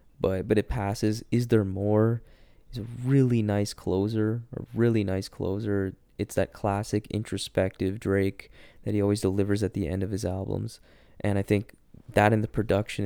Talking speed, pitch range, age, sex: 175 wpm, 95-115 Hz, 20-39, male